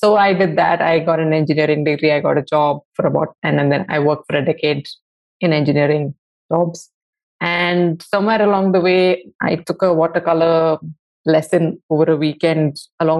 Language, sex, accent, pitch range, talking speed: English, female, Indian, 155-180 Hz, 180 wpm